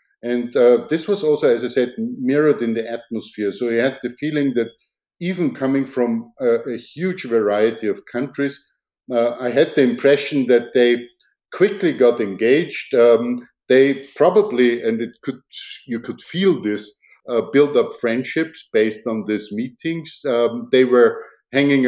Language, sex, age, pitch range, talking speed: English, male, 50-69, 115-140 Hz, 160 wpm